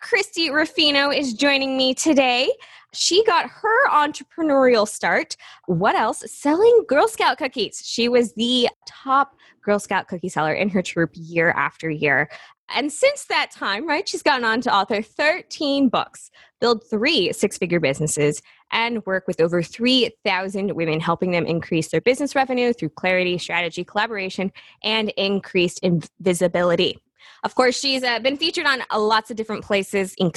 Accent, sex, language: American, female, English